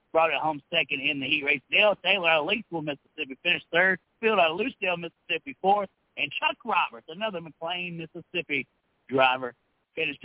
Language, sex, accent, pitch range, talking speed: English, male, American, 150-210 Hz, 175 wpm